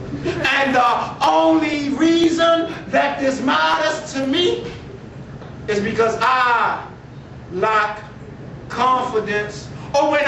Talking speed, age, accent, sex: 95 wpm, 40-59, American, male